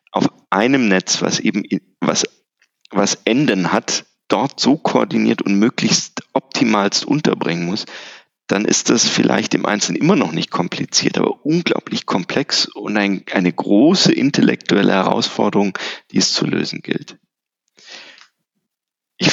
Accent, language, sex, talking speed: German, German, male, 130 wpm